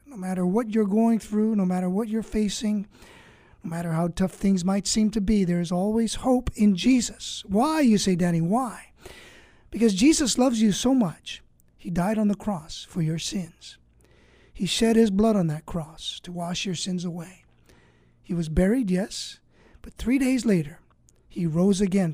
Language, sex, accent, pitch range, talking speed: English, male, American, 175-230 Hz, 185 wpm